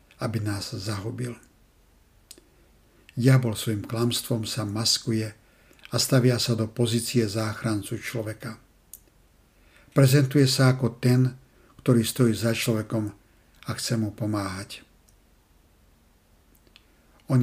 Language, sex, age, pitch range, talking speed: Slovak, male, 60-79, 110-125 Hz, 95 wpm